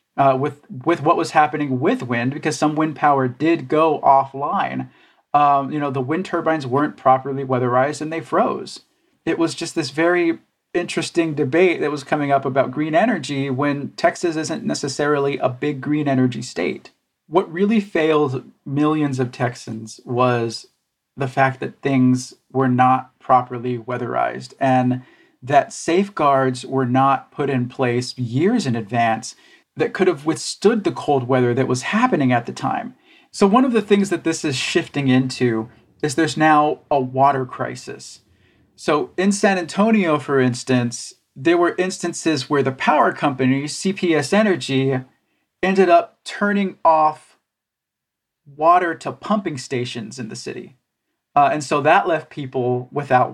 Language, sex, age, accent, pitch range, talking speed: English, male, 40-59, American, 130-165 Hz, 155 wpm